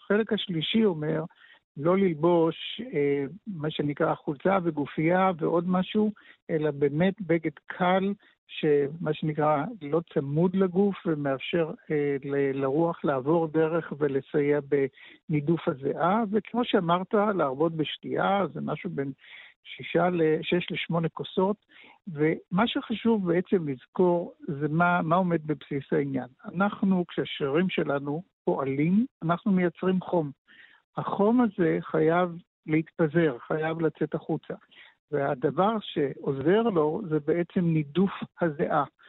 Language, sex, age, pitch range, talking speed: Hebrew, male, 60-79, 150-185 Hz, 105 wpm